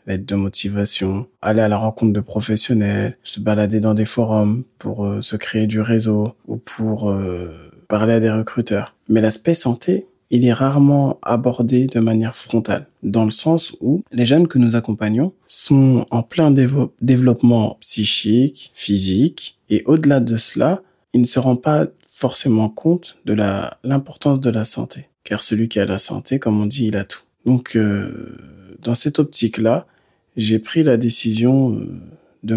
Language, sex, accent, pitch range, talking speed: French, male, French, 105-125 Hz, 170 wpm